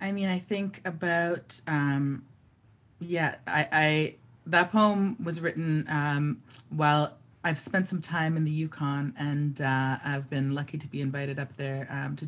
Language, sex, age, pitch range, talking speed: English, female, 30-49, 130-145 Hz, 165 wpm